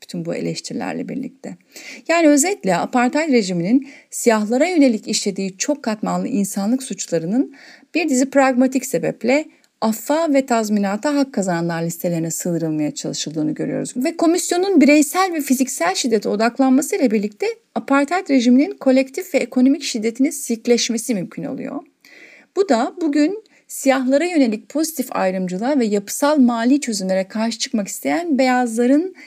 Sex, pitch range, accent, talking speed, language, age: female, 210-280 Hz, native, 125 wpm, Turkish, 30-49